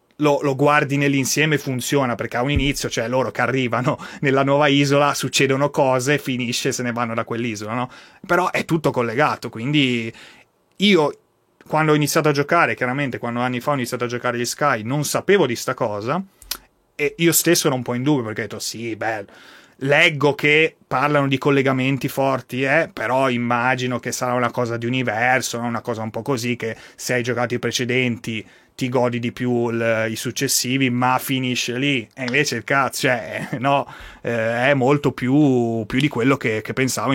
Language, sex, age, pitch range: Italian, male, 30-49, 120-140 Hz